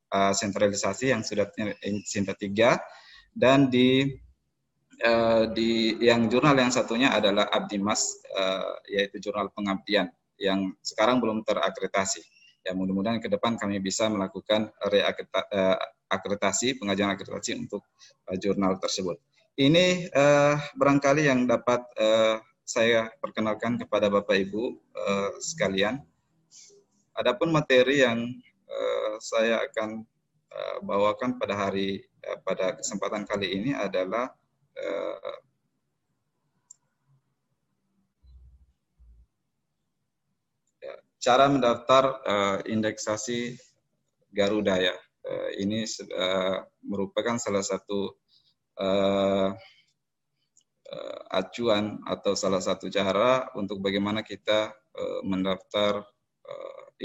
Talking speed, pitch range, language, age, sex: 100 wpm, 100-125 Hz, Indonesian, 20-39, male